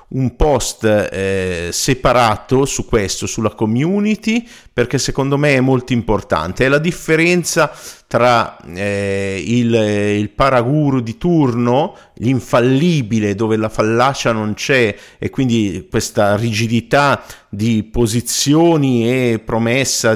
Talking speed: 115 wpm